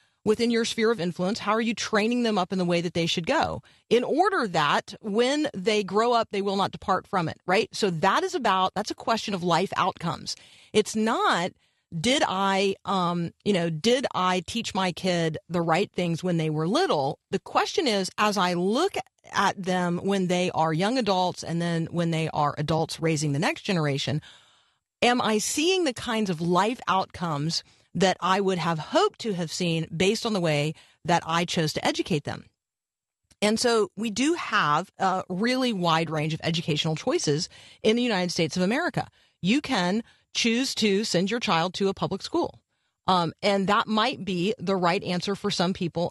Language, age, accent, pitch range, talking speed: English, 40-59, American, 170-220 Hz, 195 wpm